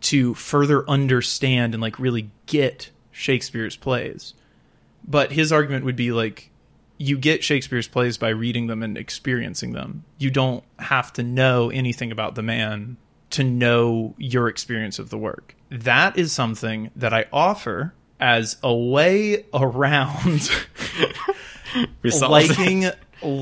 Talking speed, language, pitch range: 135 wpm, English, 115-135 Hz